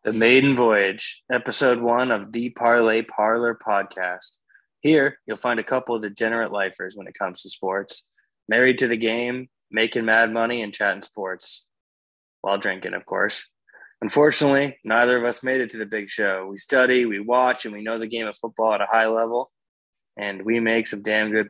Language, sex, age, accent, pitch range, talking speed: English, male, 20-39, American, 105-120 Hz, 190 wpm